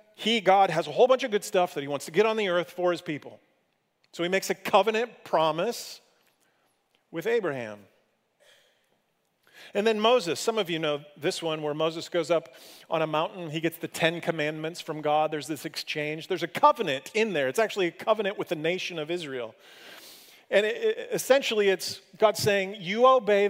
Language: English